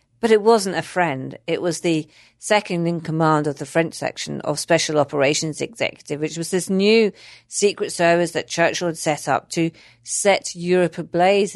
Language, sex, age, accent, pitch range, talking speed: English, female, 40-59, British, 145-190 Hz, 175 wpm